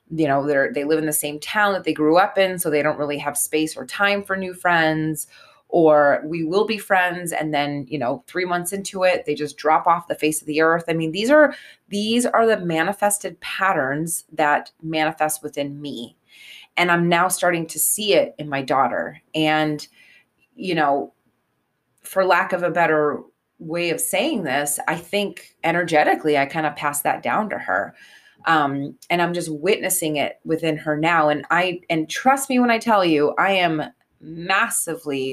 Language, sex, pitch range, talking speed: English, female, 150-190 Hz, 190 wpm